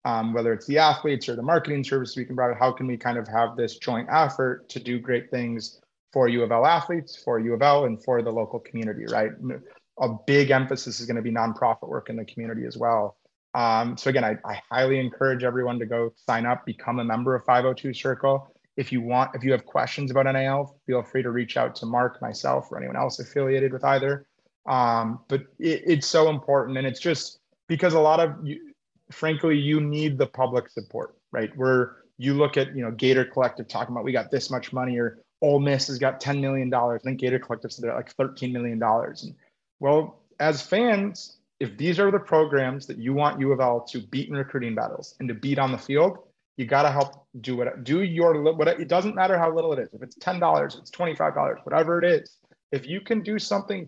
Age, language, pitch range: 30-49, English, 125-150 Hz